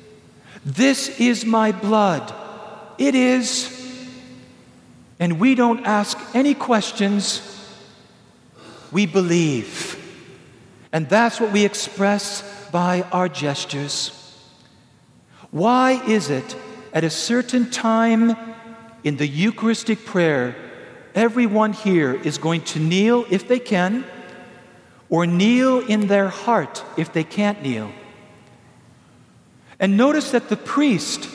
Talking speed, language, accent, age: 105 wpm, English, American, 50-69